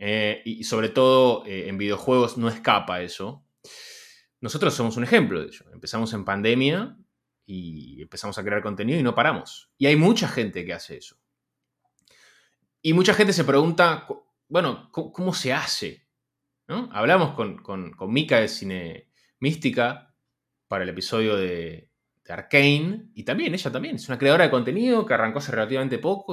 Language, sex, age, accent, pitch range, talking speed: Spanish, male, 20-39, Argentinian, 115-165 Hz, 165 wpm